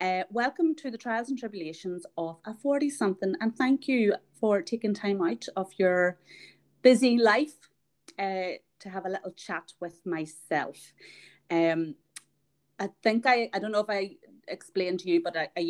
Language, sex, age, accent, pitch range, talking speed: English, female, 30-49, Irish, 170-215 Hz, 170 wpm